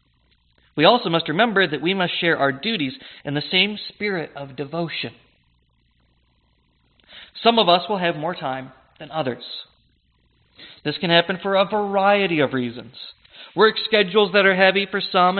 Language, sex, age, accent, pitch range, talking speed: English, male, 40-59, American, 145-200 Hz, 155 wpm